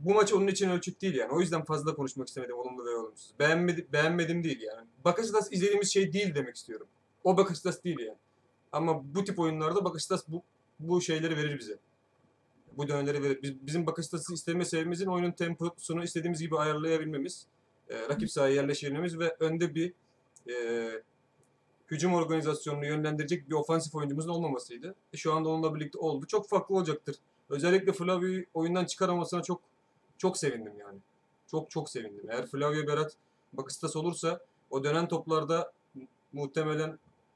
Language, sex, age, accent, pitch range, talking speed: Turkish, male, 30-49, native, 140-175 Hz, 155 wpm